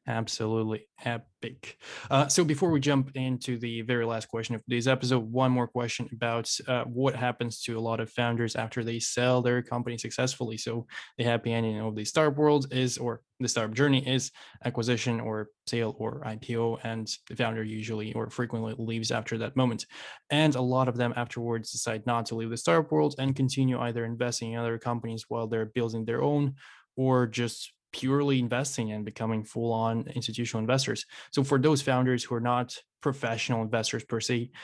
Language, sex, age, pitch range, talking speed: English, male, 10-29, 115-125 Hz, 185 wpm